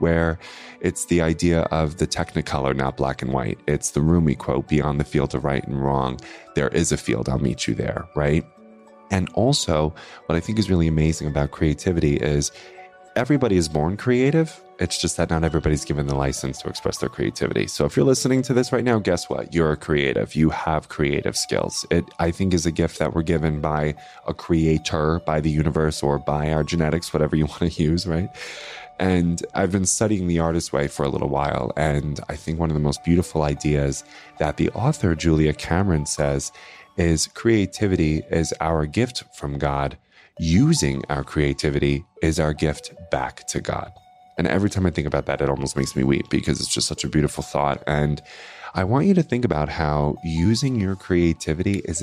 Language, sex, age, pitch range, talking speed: English, male, 20-39, 75-90 Hz, 200 wpm